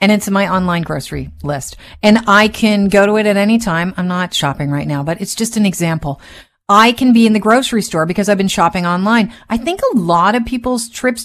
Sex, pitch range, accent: female, 175-220 Hz, American